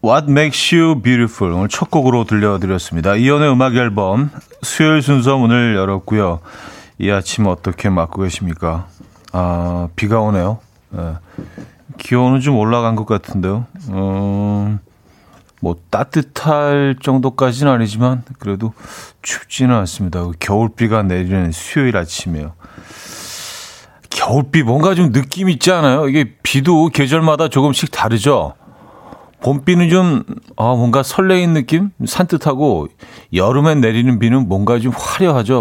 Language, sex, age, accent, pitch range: Korean, male, 40-59, native, 95-140 Hz